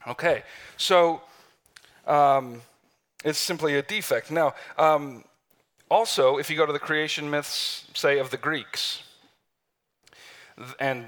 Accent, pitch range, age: American, 135-190 Hz, 40-59